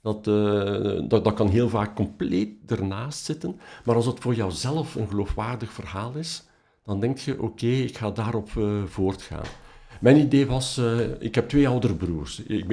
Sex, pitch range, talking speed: male, 100-130 Hz, 180 wpm